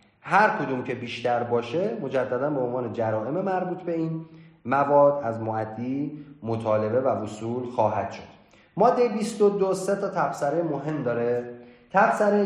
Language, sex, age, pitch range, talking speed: Persian, male, 30-49, 115-155 Hz, 135 wpm